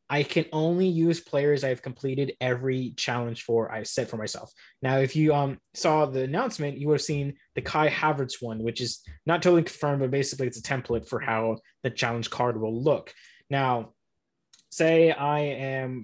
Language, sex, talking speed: English, male, 185 wpm